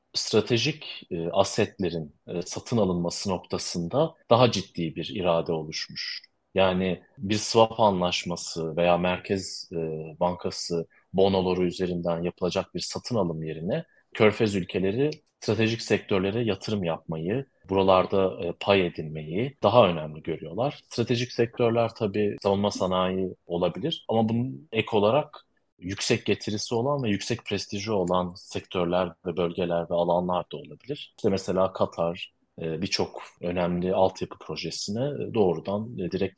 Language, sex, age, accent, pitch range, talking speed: Turkish, male, 30-49, native, 85-115 Hz, 120 wpm